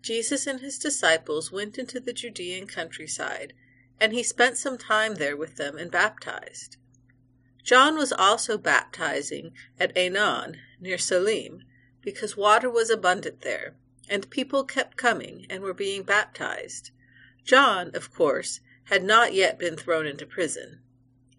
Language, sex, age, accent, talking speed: English, female, 40-59, American, 140 wpm